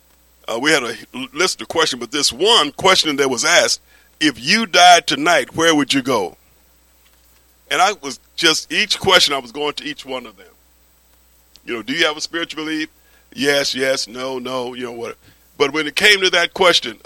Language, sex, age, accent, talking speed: English, male, 50-69, American, 205 wpm